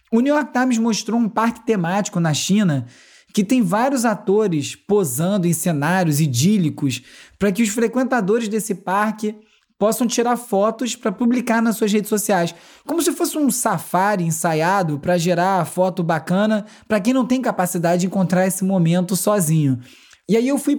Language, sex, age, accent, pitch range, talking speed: Portuguese, male, 20-39, Brazilian, 170-225 Hz, 165 wpm